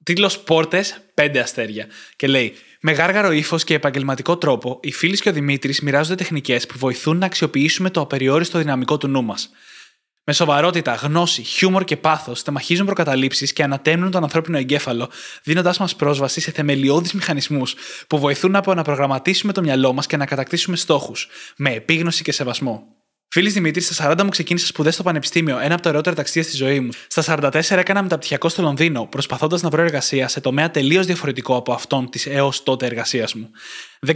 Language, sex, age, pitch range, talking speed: Greek, male, 20-39, 135-170 Hz, 180 wpm